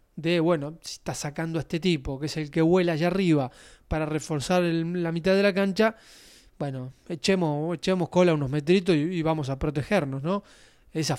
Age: 20-39